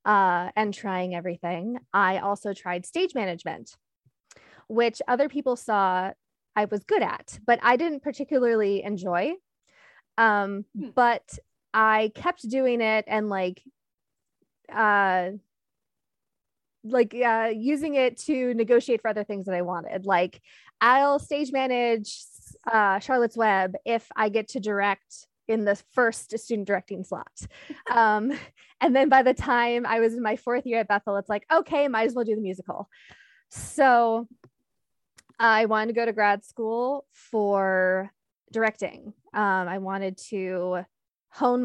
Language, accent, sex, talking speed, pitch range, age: English, American, female, 145 wpm, 200-250 Hz, 20-39